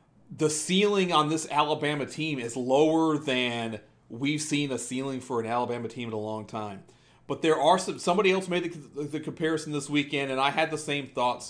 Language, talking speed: English, 205 wpm